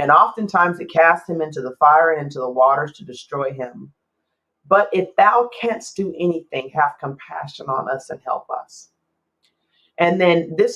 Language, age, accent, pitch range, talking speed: English, 40-59, American, 150-195 Hz, 175 wpm